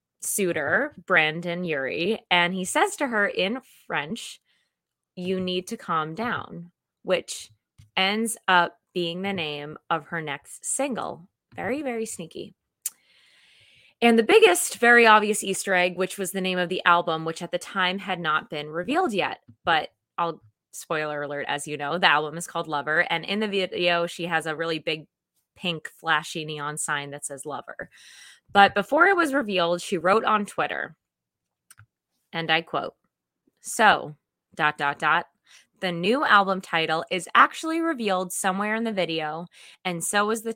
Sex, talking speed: female, 165 wpm